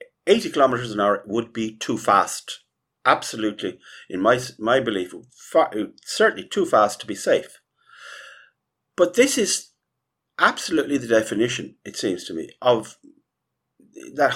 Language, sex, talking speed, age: English, male, 135 wpm, 50-69